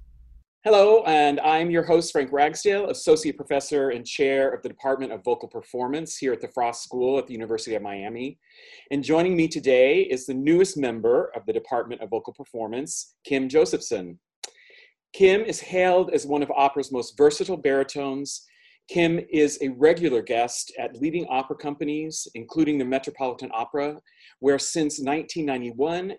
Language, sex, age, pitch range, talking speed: English, male, 30-49, 130-180 Hz, 160 wpm